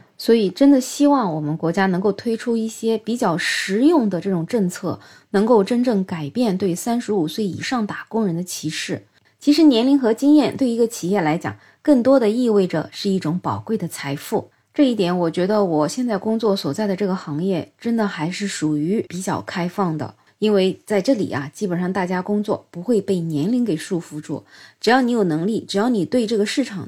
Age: 20-39